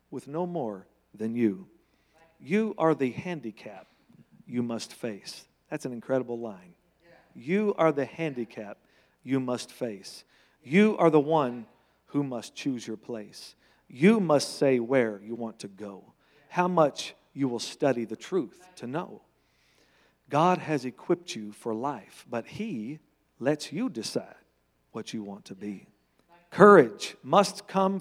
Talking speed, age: 145 wpm, 50-69